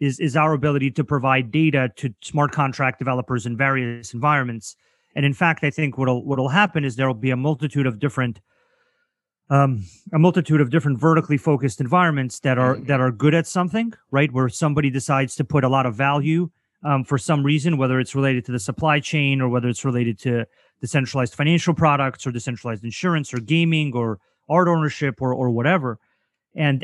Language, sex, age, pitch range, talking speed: English, male, 30-49, 130-155 Hz, 190 wpm